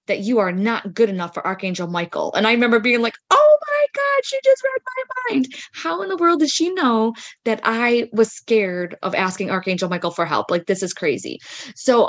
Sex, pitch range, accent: female, 180-220 Hz, American